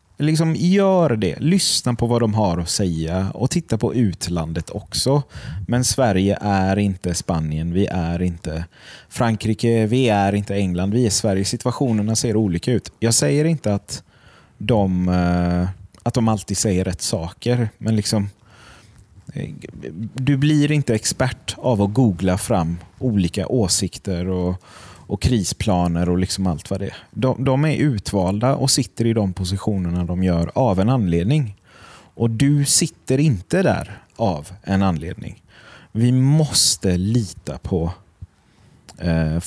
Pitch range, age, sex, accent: 95-125 Hz, 30-49, male, native